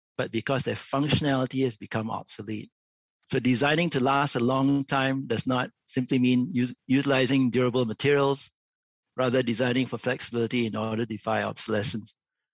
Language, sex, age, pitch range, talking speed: English, male, 60-79, 120-145 Hz, 145 wpm